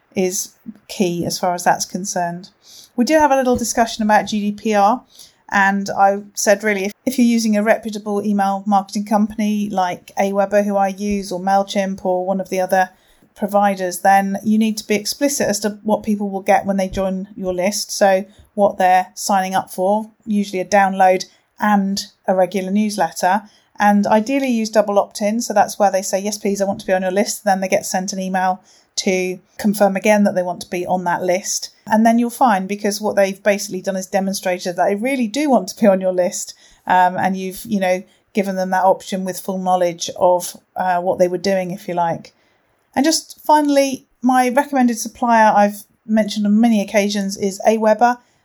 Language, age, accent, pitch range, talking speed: English, 30-49, British, 190-215 Hz, 200 wpm